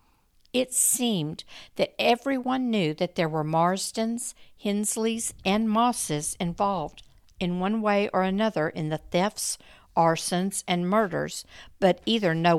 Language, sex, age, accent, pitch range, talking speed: English, female, 60-79, American, 155-205 Hz, 130 wpm